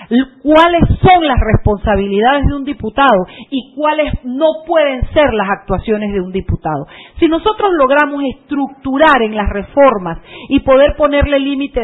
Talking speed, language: 140 wpm, Spanish